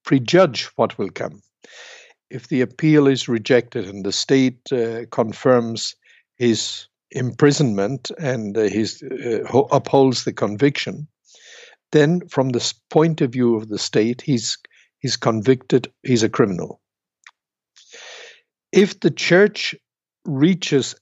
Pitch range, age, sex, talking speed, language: 115-150 Hz, 60-79, male, 120 wpm, English